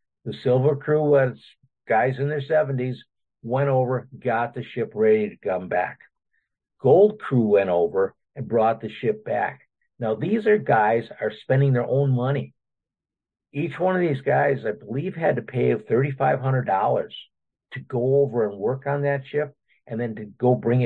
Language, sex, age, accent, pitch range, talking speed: English, male, 50-69, American, 120-155 Hz, 170 wpm